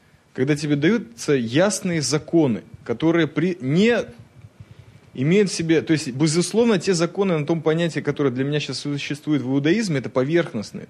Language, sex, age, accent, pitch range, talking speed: Russian, male, 20-39, native, 120-165 Hz, 150 wpm